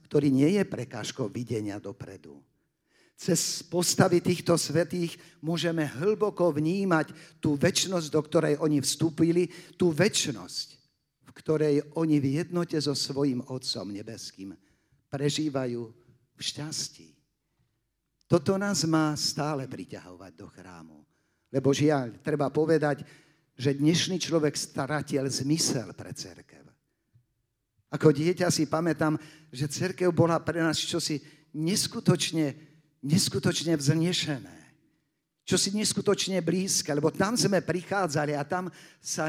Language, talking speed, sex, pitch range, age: Slovak, 115 wpm, male, 135-175 Hz, 50-69